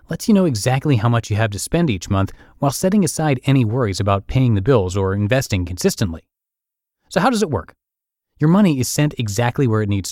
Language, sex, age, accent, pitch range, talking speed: English, male, 30-49, American, 100-140 Hz, 220 wpm